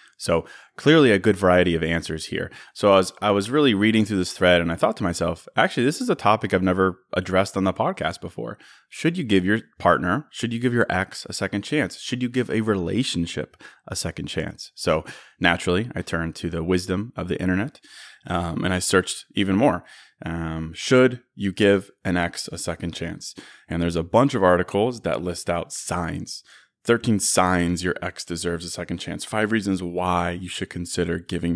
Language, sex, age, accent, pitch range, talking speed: English, male, 20-39, American, 85-110 Hz, 200 wpm